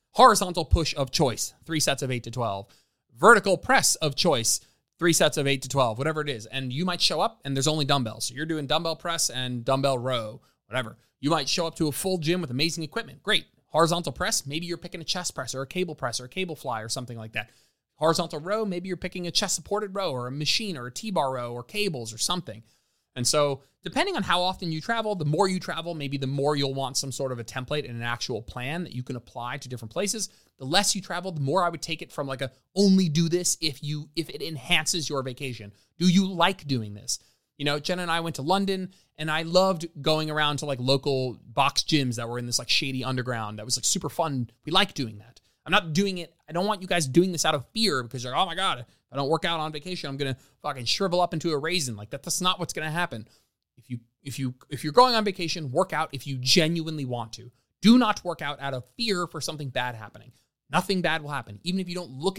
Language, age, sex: English, 20-39, male